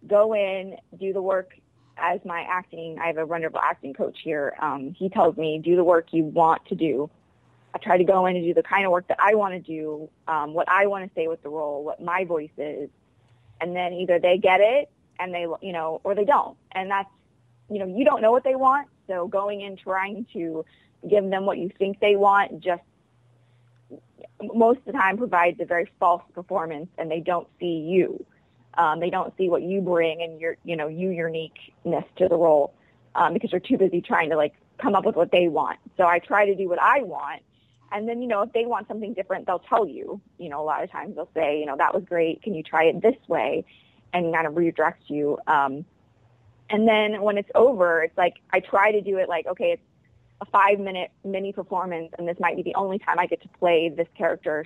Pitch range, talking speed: 160-195 Hz, 235 wpm